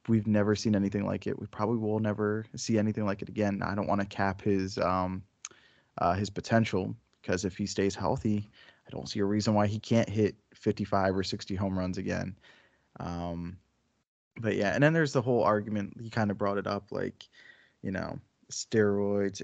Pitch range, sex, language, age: 100-115 Hz, male, English, 20-39